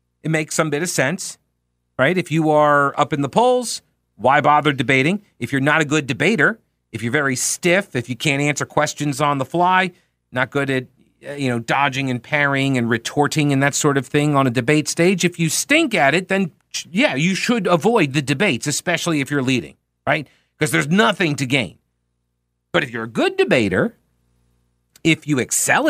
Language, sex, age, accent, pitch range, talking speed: English, male, 40-59, American, 135-210 Hz, 195 wpm